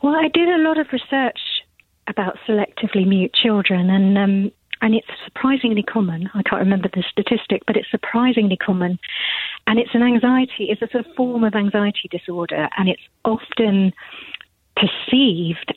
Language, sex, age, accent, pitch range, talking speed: English, female, 30-49, British, 180-215 Hz, 160 wpm